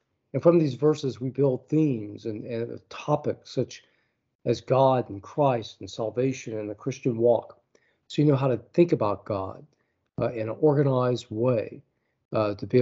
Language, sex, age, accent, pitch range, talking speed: English, male, 50-69, American, 115-145 Hz, 175 wpm